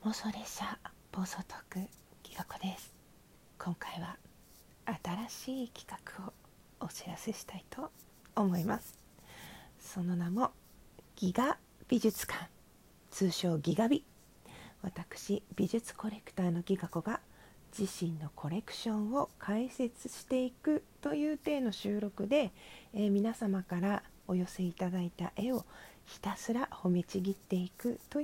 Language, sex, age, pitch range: Japanese, female, 40-59, 185-245 Hz